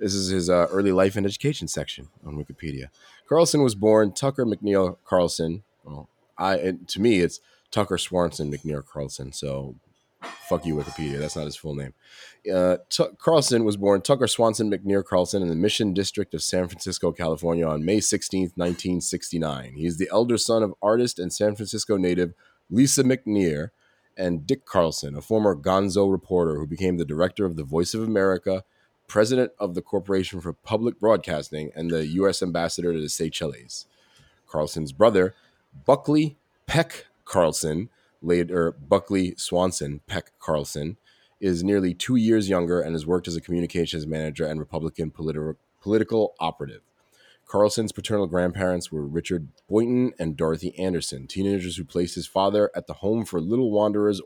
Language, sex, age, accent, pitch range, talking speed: English, male, 30-49, American, 80-100 Hz, 160 wpm